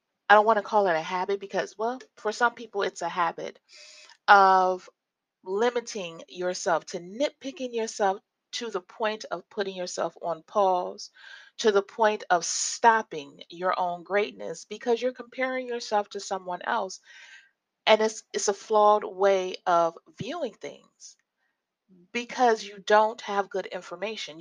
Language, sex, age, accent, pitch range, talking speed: English, female, 30-49, American, 180-235 Hz, 145 wpm